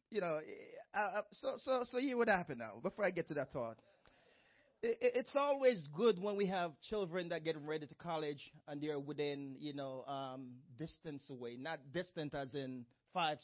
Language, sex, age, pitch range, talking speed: English, male, 20-39, 130-175 Hz, 190 wpm